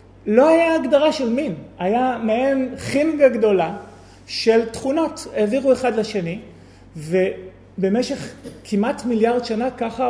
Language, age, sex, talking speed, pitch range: Hebrew, 30-49, male, 115 wpm, 165-235 Hz